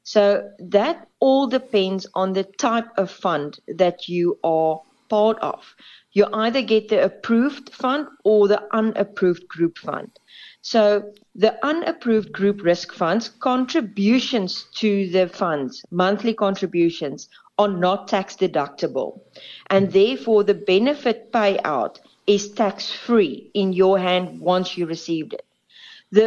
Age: 40-59